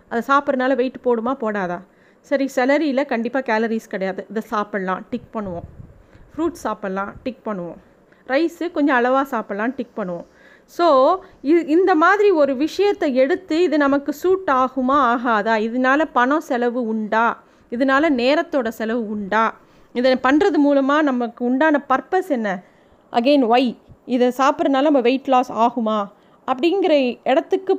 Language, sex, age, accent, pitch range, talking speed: Tamil, female, 30-49, native, 225-285 Hz, 130 wpm